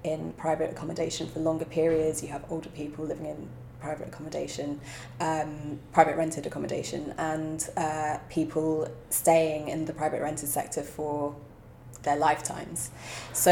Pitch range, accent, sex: 145-165 Hz, British, female